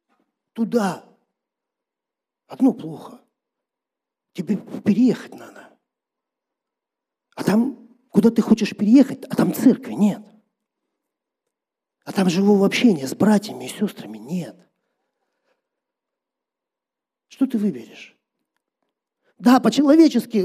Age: 40-59